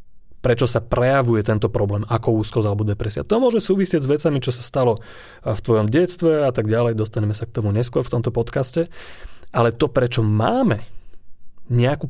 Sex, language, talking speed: male, Slovak, 180 wpm